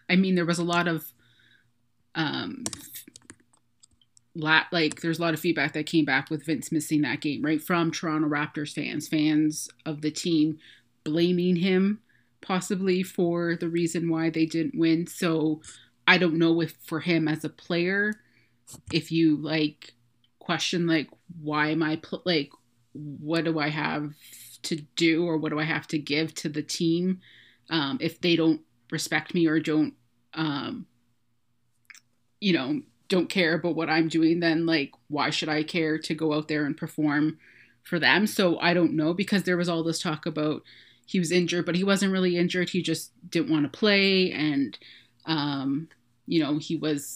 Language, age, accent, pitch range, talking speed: English, 20-39, American, 150-170 Hz, 180 wpm